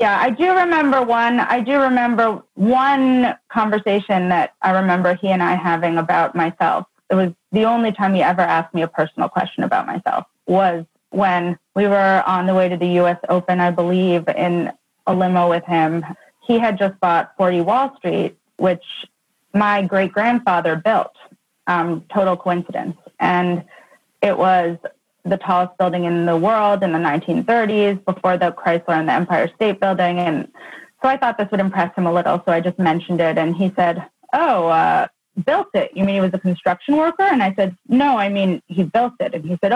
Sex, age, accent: female, 30-49, American